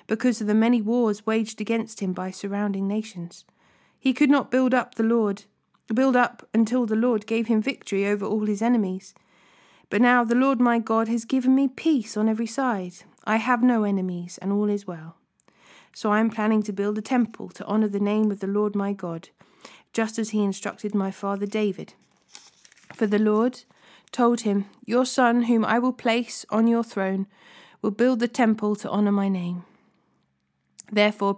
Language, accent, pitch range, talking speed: English, British, 200-235 Hz, 185 wpm